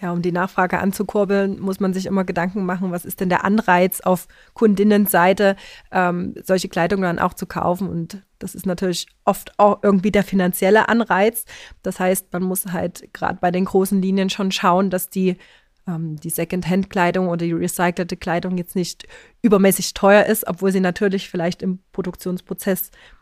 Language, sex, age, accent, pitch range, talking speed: German, female, 30-49, German, 180-200 Hz, 170 wpm